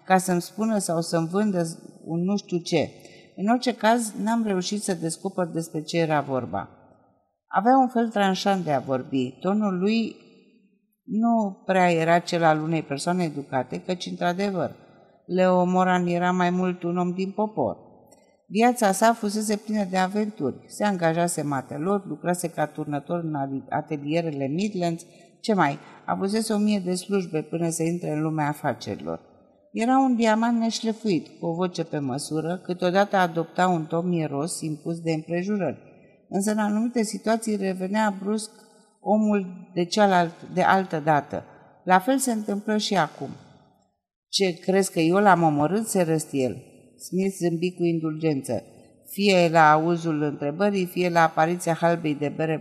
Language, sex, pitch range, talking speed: Romanian, female, 155-205 Hz, 155 wpm